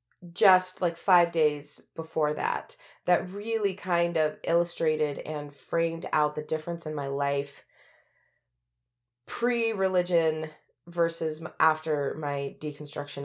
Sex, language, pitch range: female, English, 150-180 Hz